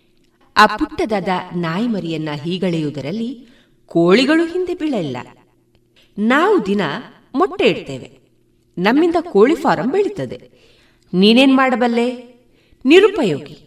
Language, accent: Kannada, native